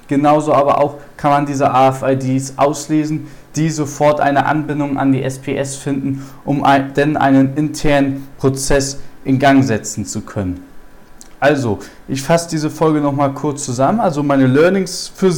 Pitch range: 130-145 Hz